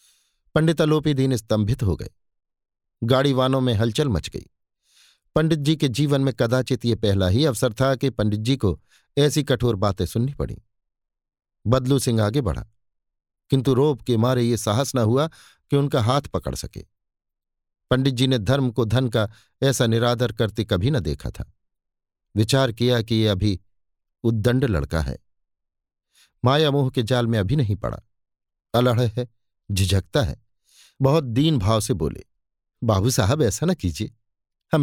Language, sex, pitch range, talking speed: Hindi, male, 100-140 Hz, 160 wpm